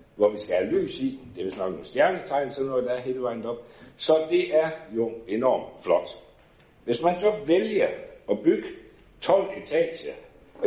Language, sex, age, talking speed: Danish, male, 60-79, 180 wpm